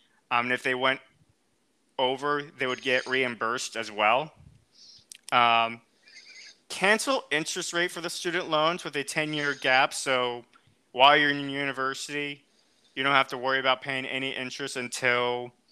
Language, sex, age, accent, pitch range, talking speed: English, male, 20-39, American, 125-140 Hz, 150 wpm